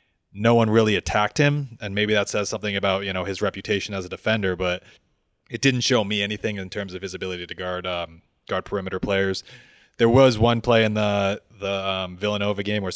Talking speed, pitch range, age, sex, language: 215 wpm, 95-115 Hz, 30-49, male, English